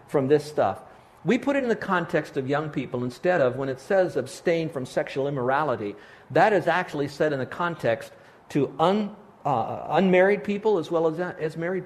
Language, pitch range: English, 130-170 Hz